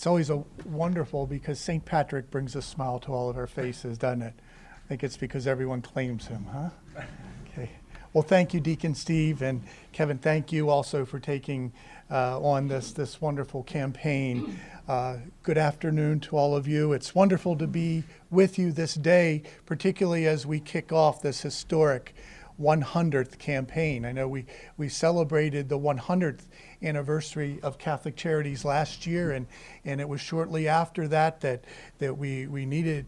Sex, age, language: male, 50-69, English